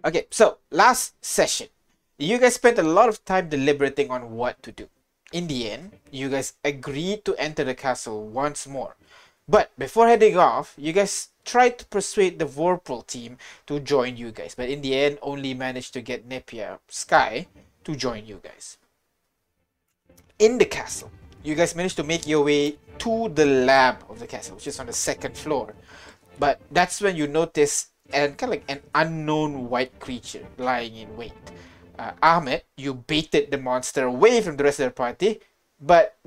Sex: male